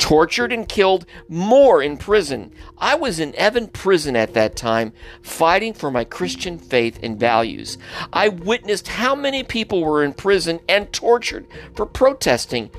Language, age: English, 50-69